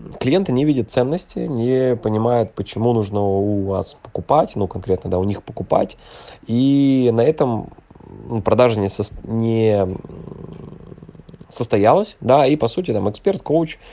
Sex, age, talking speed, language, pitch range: male, 20-39, 130 wpm, Russian, 100-130 Hz